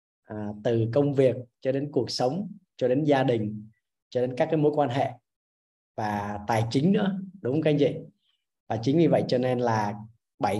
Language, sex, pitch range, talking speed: Vietnamese, male, 105-140 Hz, 205 wpm